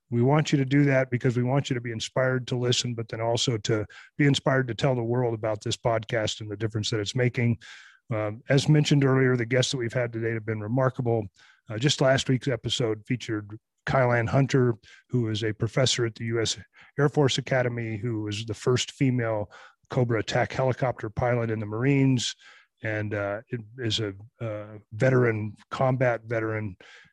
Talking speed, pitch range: 190 wpm, 110-130 Hz